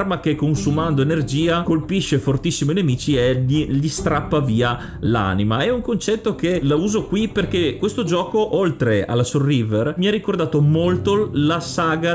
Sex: male